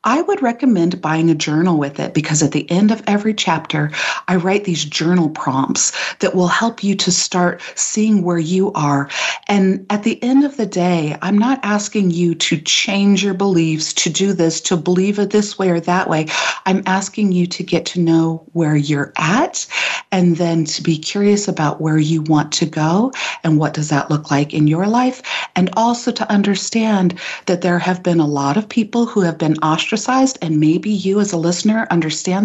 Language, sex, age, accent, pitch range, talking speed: English, female, 40-59, American, 165-215 Hz, 200 wpm